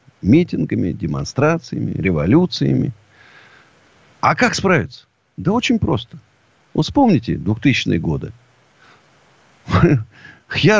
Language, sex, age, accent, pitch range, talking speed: Russian, male, 50-69, native, 110-160 Hz, 80 wpm